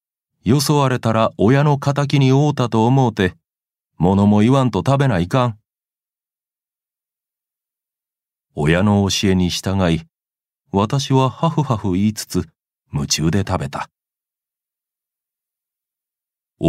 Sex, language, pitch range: male, Japanese, 90-125 Hz